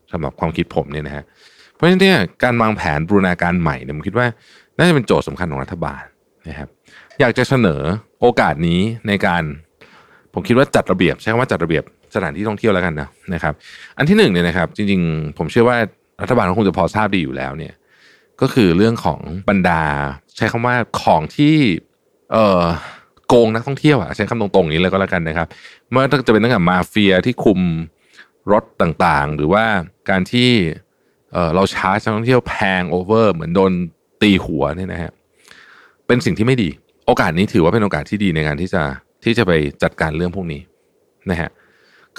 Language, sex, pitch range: Thai, male, 80-120 Hz